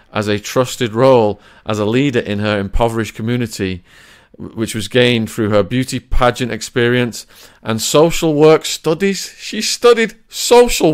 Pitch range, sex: 110-130 Hz, male